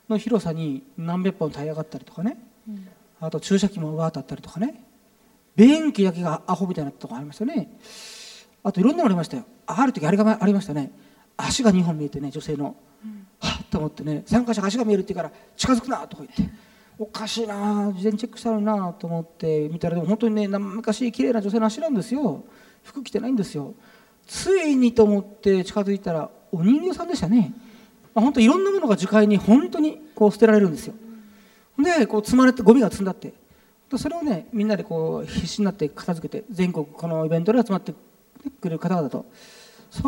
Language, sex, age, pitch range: Japanese, male, 40-59, 180-225 Hz